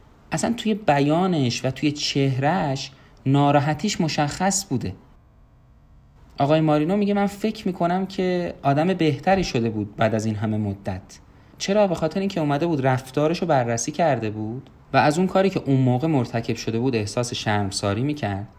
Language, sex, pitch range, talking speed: Persian, male, 110-150 Hz, 160 wpm